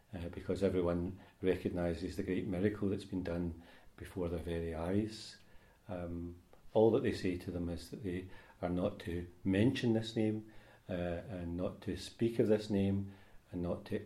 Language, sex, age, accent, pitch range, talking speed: English, male, 40-59, British, 90-105 Hz, 175 wpm